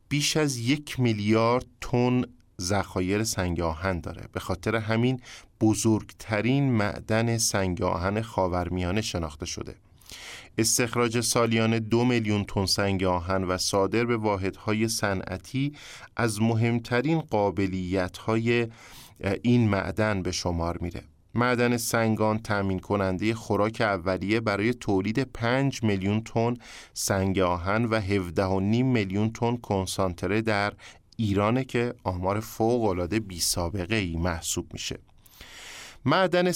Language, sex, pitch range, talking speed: Persian, male, 95-120 Hz, 110 wpm